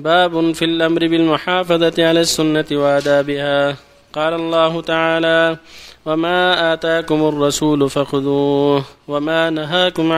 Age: 20-39